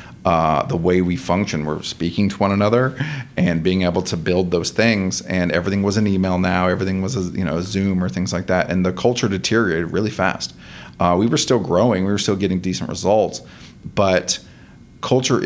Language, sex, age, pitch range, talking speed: English, male, 40-59, 90-110 Hz, 200 wpm